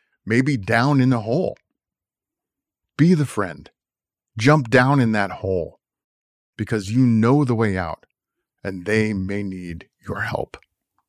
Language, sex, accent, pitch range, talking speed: English, male, American, 110-150 Hz, 135 wpm